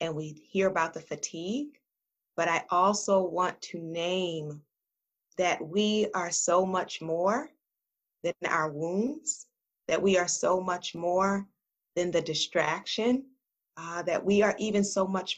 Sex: female